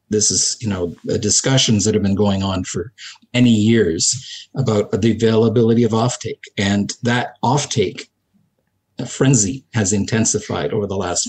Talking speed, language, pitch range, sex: 145 wpm, English, 100-115 Hz, male